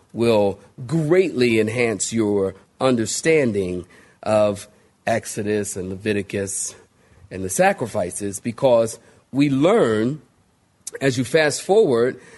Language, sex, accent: English, male, American